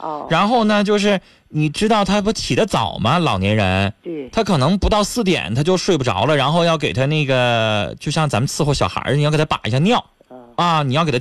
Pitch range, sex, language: 115-180 Hz, male, Chinese